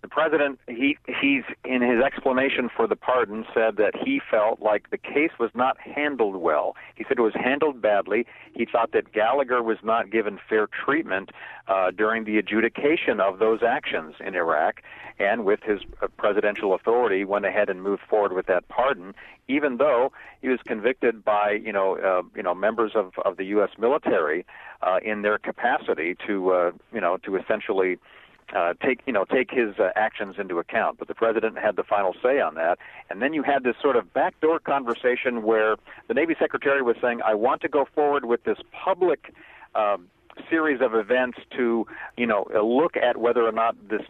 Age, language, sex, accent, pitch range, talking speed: 50-69, English, male, American, 105-130 Hz, 190 wpm